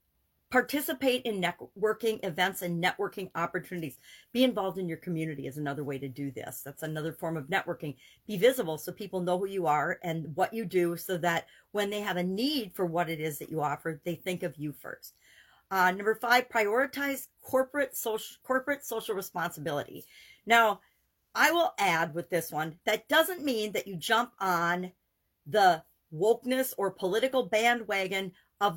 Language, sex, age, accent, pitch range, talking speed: English, female, 50-69, American, 170-220 Hz, 170 wpm